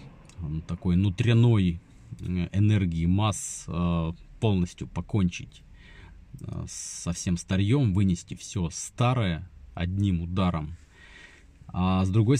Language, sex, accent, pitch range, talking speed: Russian, male, native, 85-110 Hz, 80 wpm